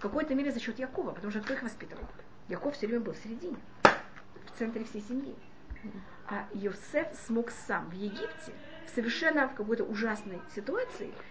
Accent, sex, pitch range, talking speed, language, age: native, female, 205-260 Hz, 175 wpm, Russian, 30-49